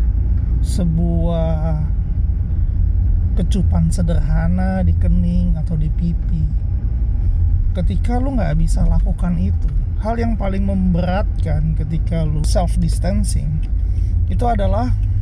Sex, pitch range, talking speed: male, 80-95 Hz, 95 wpm